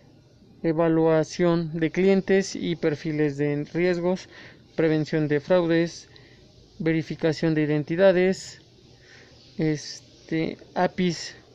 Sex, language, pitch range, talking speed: male, Spanish, 155-180 Hz, 75 wpm